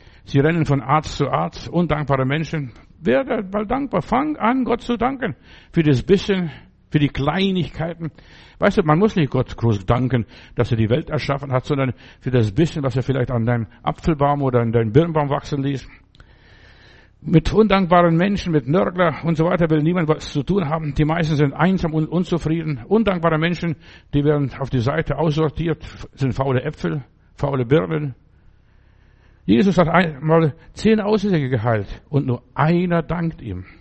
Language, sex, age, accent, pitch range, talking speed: German, male, 60-79, German, 130-165 Hz, 170 wpm